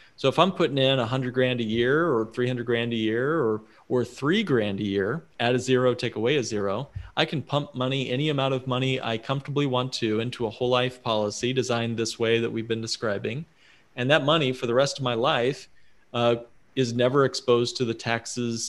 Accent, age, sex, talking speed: American, 40-59, male, 220 wpm